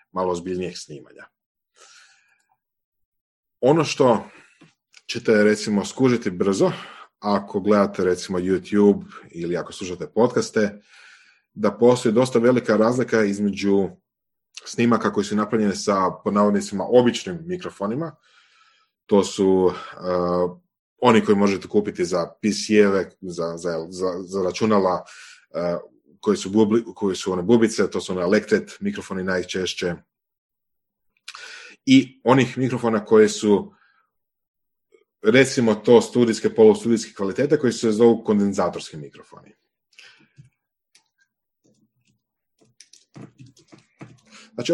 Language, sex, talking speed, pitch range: Croatian, male, 100 wpm, 95-125 Hz